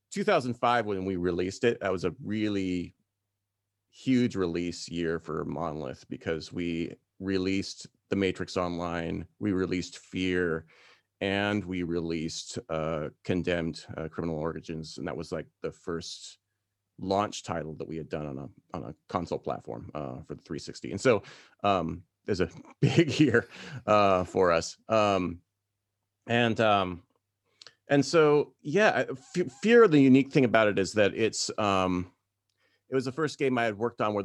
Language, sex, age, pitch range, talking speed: English, male, 30-49, 85-105 Hz, 160 wpm